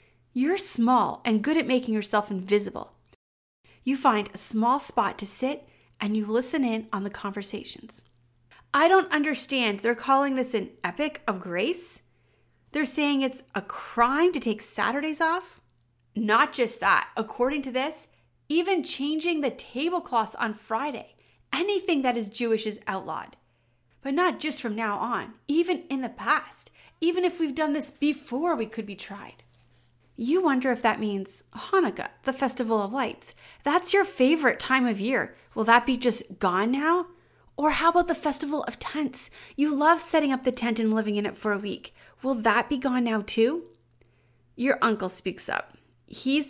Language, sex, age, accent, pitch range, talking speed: English, female, 30-49, American, 210-290 Hz, 170 wpm